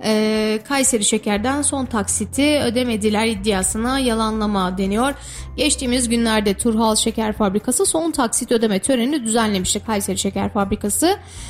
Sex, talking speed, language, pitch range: female, 110 wpm, Turkish, 215-280 Hz